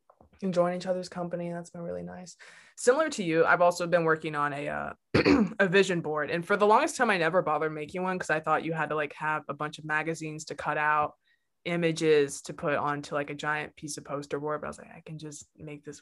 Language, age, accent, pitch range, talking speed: English, 20-39, American, 145-170 Hz, 250 wpm